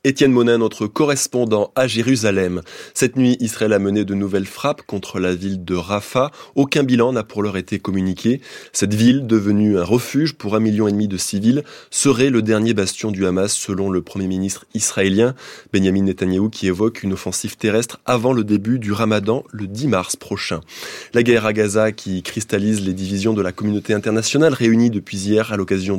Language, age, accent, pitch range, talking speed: French, 20-39, French, 100-125 Hz, 190 wpm